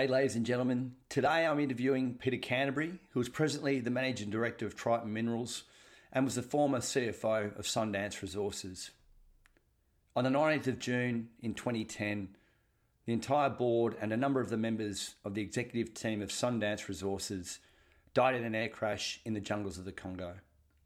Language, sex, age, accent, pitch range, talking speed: English, male, 40-59, Australian, 105-125 Hz, 170 wpm